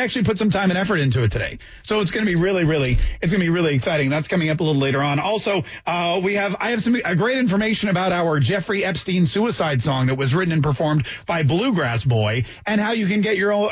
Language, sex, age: English, male, 40-59